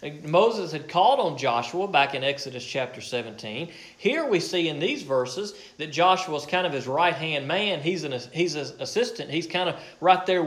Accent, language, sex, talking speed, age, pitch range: American, English, male, 195 wpm, 40-59, 135-175 Hz